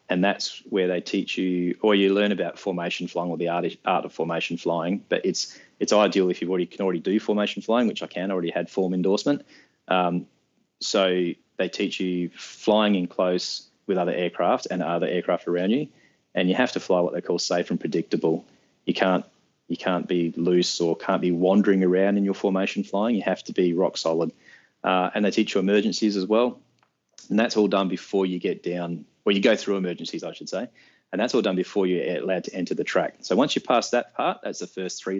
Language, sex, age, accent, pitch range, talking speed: English, male, 20-39, Australian, 85-100 Hz, 220 wpm